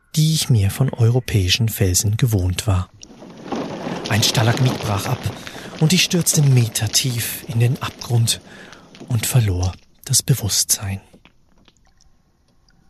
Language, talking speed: German, 110 wpm